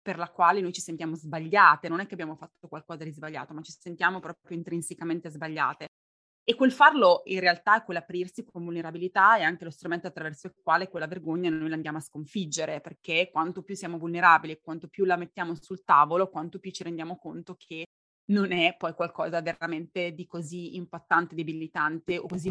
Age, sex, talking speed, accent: 20-39, female, 195 wpm, native